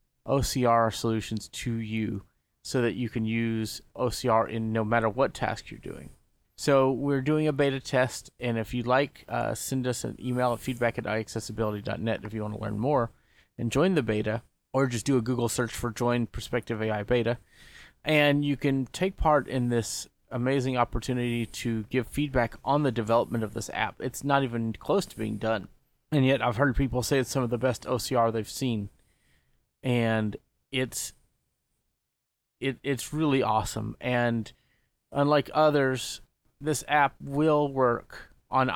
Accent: American